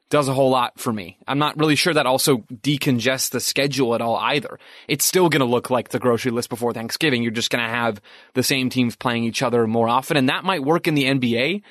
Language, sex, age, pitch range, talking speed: English, male, 20-39, 125-150 Hz, 250 wpm